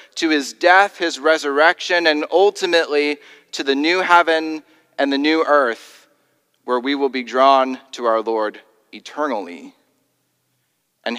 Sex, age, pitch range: male, 30-49, 140-175 Hz